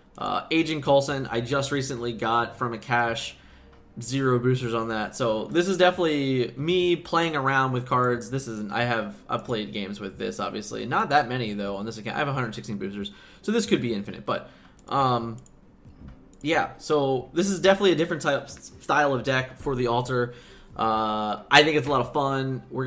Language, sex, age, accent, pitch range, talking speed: English, male, 20-39, American, 115-145 Hz, 195 wpm